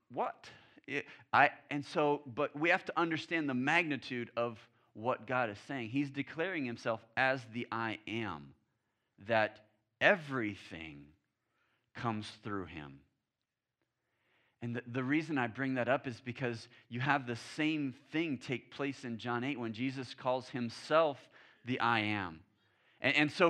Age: 30-49